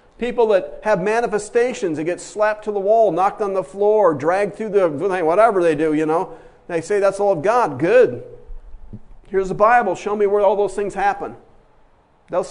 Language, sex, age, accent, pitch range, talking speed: English, male, 50-69, American, 160-225 Hz, 190 wpm